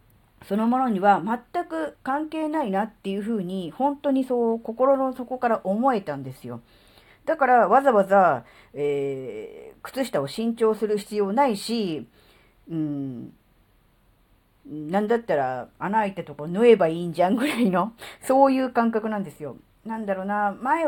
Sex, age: female, 40-59